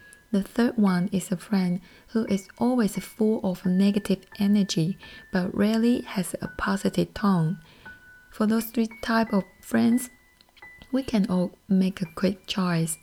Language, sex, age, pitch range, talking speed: English, female, 20-39, 185-225 Hz, 145 wpm